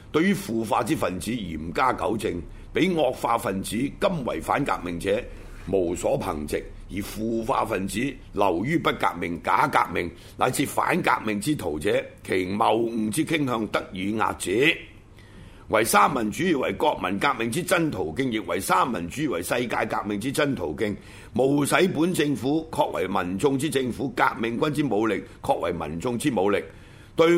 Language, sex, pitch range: Chinese, male, 100-140 Hz